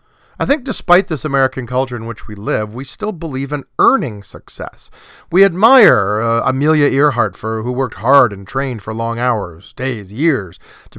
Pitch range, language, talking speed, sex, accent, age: 115-145 Hz, English, 180 wpm, male, American, 40-59